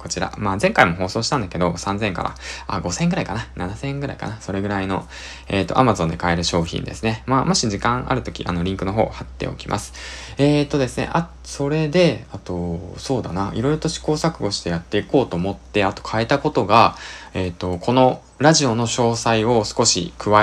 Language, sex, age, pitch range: Japanese, male, 20-39, 95-130 Hz